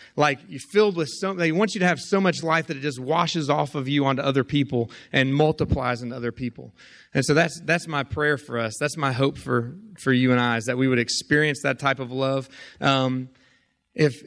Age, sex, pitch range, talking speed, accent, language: 30-49, male, 120-150 Hz, 230 wpm, American, English